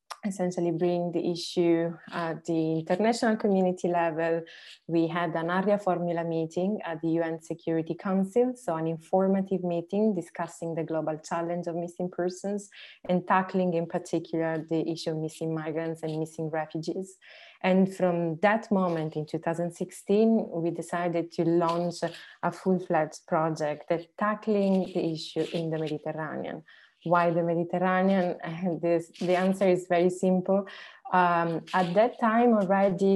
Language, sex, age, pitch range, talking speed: English, female, 20-39, 165-190 Hz, 140 wpm